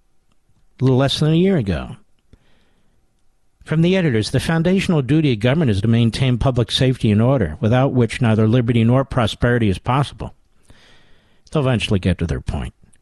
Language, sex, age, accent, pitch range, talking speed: English, male, 50-69, American, 120-155 Hz, 165 wpm